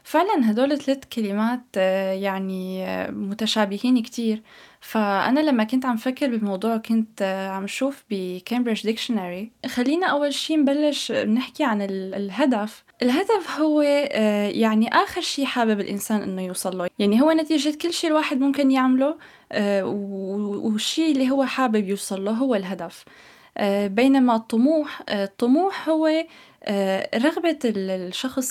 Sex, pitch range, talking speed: female, 205-270 Hz, 120 wpm